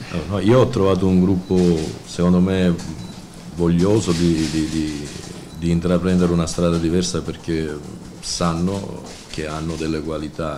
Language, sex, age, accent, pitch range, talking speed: Italian, male, 50-69, native, 75-85 Hz, 130 wpm